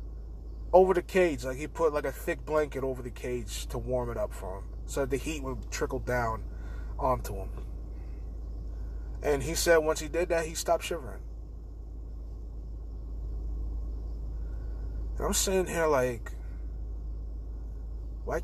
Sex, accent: male, American